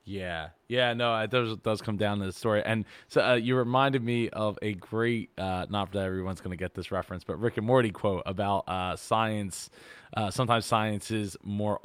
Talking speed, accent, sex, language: 215 wpm, American, male, English